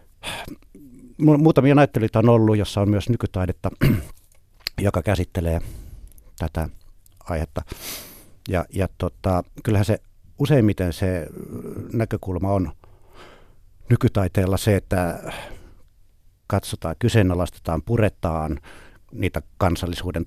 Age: 60-79